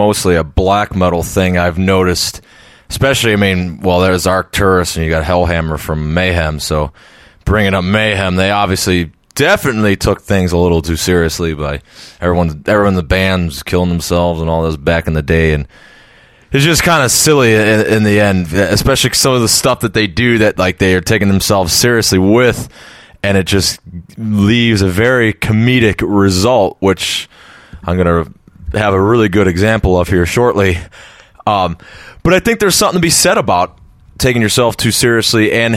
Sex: male